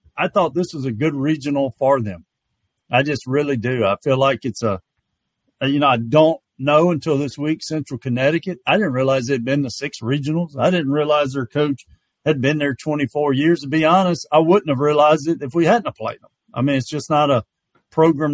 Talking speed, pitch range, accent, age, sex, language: 220 wpm, 130-165 Hz, American, 50-69, male, English